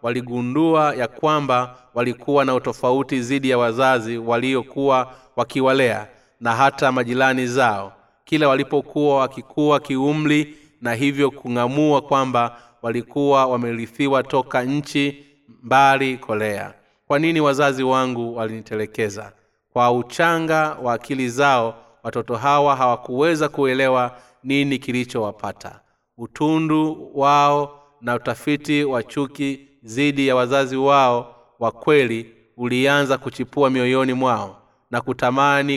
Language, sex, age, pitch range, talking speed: Swahili, male, 30-49, 120-145 Hz, 105 wpm